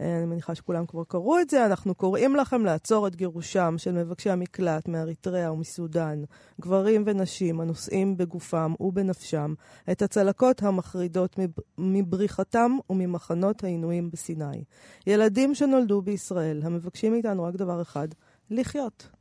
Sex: female